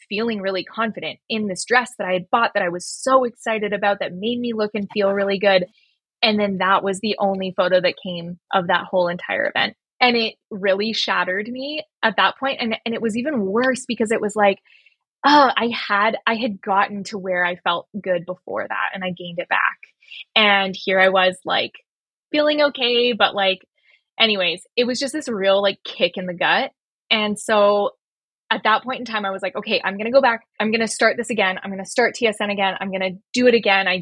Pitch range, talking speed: 195-225 Hz, 230 wpm